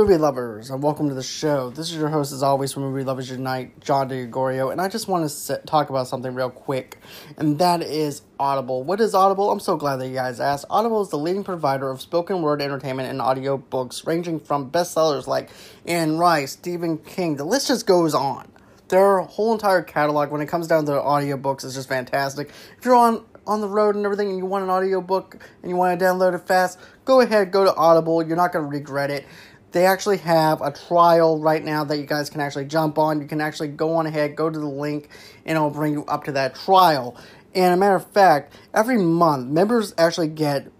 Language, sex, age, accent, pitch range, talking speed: English, male, 20-39, American, 145-190 Hz, 225 wpm